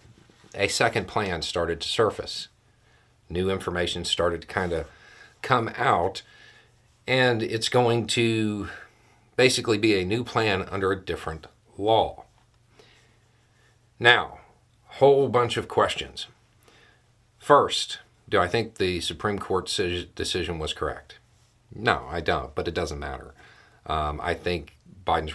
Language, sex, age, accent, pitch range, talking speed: English, male, 50-69, American, 85-115 Hz, 125 wpm